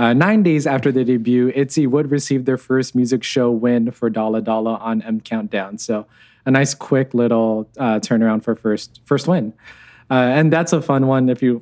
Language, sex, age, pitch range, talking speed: English, male, 20-39, 115-130 Hz, 200 wpm